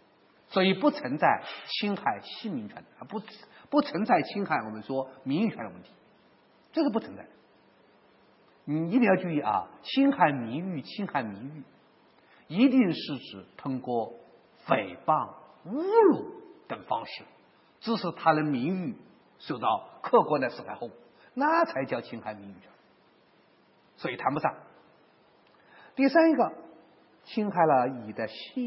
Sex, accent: male, native